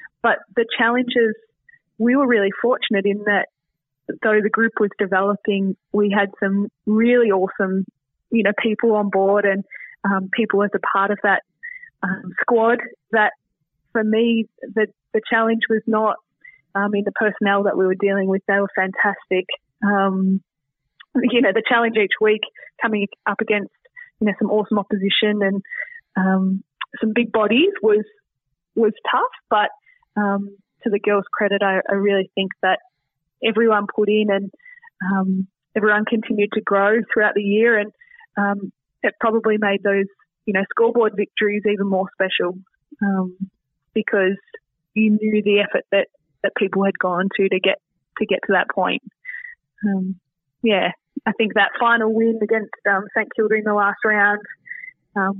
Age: 20-39